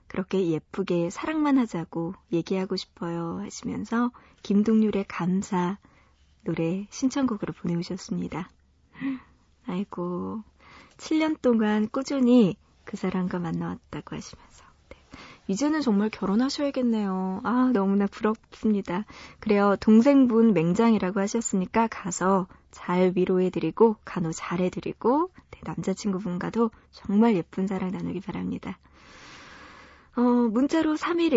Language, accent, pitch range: Korean, native, 180-235 Hz